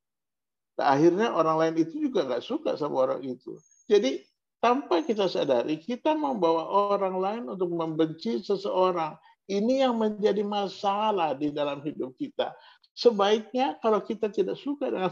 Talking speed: 140 wpm